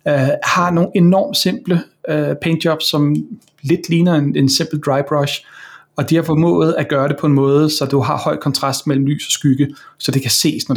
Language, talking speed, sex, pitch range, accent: Danish, 210 wpm, male, 135-150 Hz, native